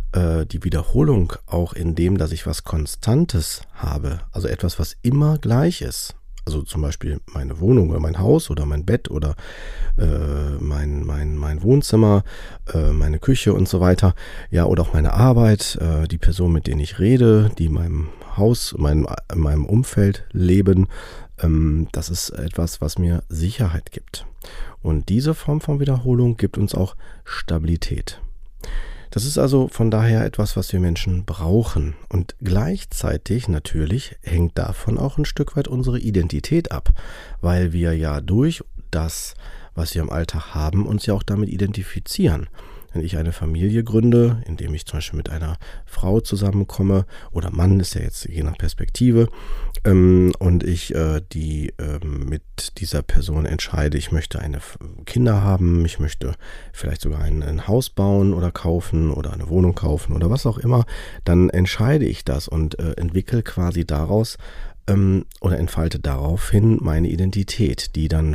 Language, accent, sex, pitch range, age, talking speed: German, German, male, 80-105 Hz, 40-59, 160 wpm